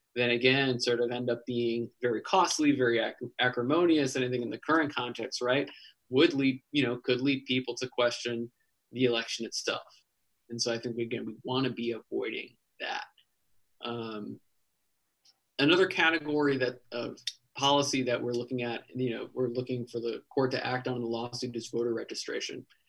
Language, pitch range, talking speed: English, 120-135 Hz, 170 wpm